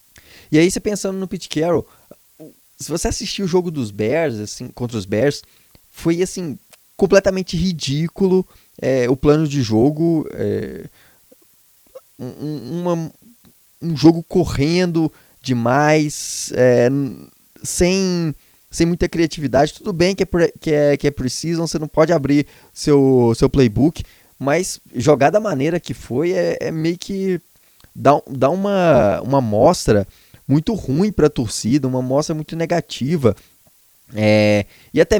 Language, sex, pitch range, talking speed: Portuguese, male, 125-170 Hz, 140 wpm